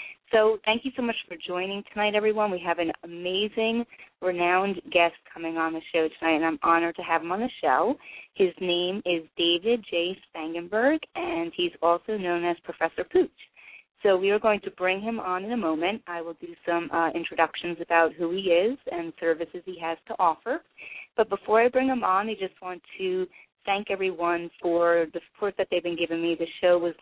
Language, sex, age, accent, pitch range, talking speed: English, female, 30-49, American, 165-205 Hz, 205 wpm